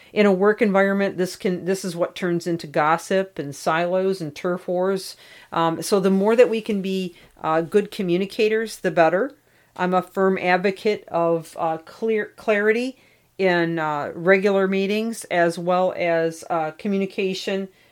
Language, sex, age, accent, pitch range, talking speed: English, female, 40-59, American, 170-200 Hz, 155 wpm